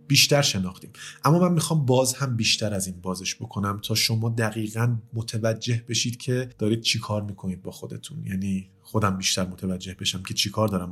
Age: 30-49